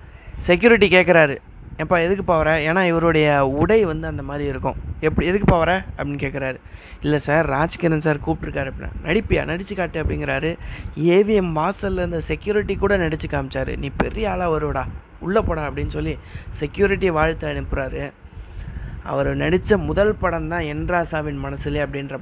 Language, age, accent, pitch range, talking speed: Tamil, 30-49, native, 140-170 Hz, 145 wpm